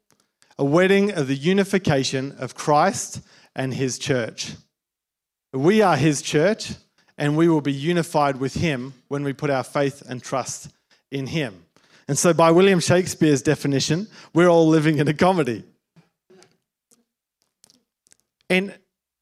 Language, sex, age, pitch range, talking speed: English, male, 40-59, 135-175 Hz, 135 wpm